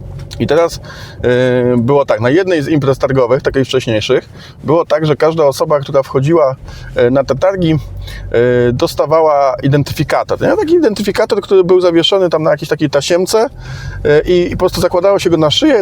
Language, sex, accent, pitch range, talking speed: Polish, male, native, 120-160 Hz, 160 wpm